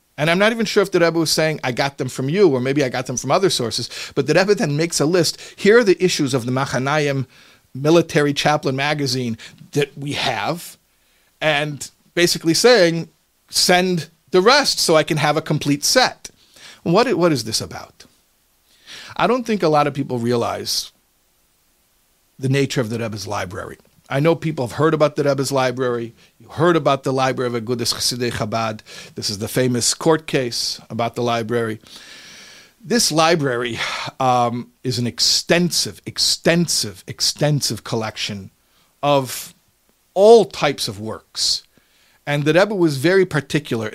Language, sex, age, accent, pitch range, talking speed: English, male, 50-69, American, 120-160 Hz, 165 wpm